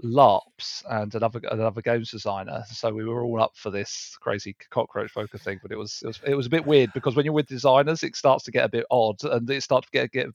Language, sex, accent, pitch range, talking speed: English, male, British, 115-135 Hz, 260 wpm